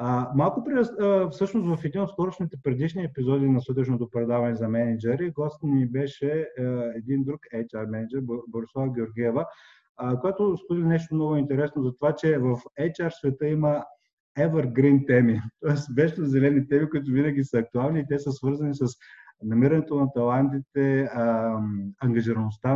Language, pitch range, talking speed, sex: Bulgarian, 120-155 Hz, 155 wpm, male